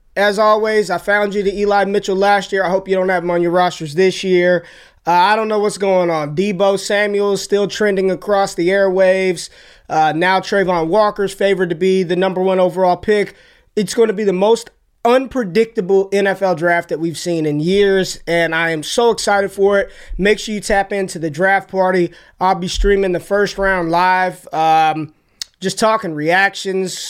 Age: 20-39